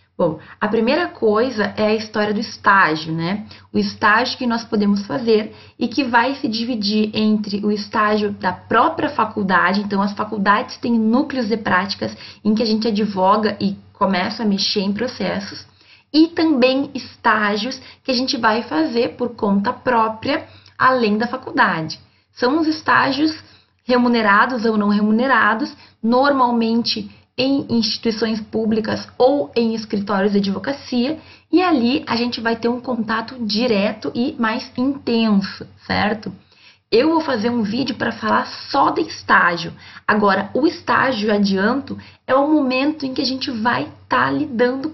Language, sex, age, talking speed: Portuguese, female, 20-39, 150 wpm